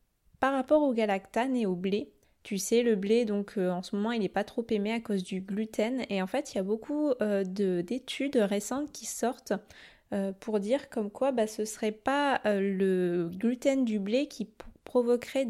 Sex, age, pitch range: female, 20-39, 200-245 Hz